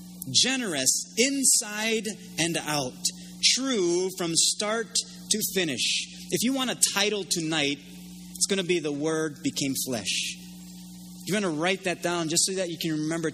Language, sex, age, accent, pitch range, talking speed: English, male, 30-49, American, 160-200 Hz, 155 wpm